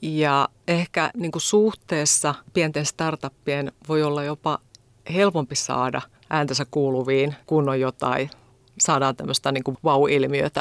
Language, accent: Finnish, native